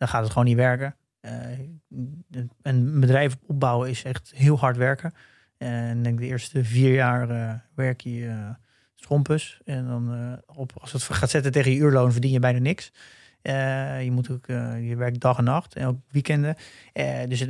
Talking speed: 190 wpm